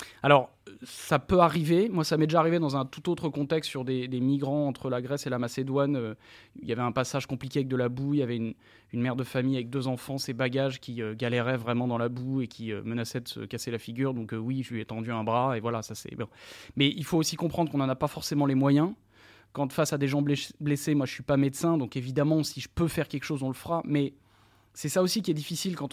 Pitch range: 130-165 Hz